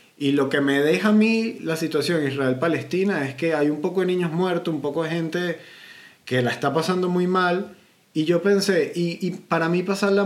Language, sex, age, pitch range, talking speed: Spanish, male, 30-49, 145-185 Hz, 210 wpm